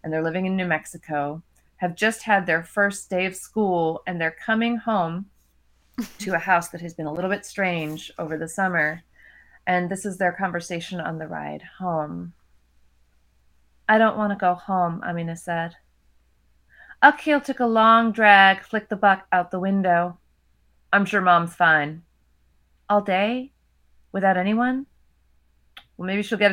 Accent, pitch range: American, 160-220 Hz